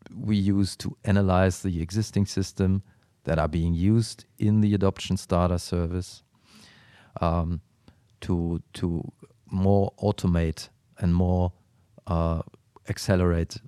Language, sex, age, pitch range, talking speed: English, male, 40-59, 90-105 Hz, 110 wpm